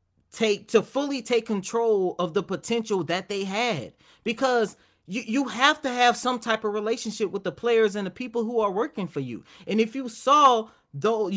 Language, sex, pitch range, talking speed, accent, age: English, male, 170-235 Hz, 195 wpm, American, 30-49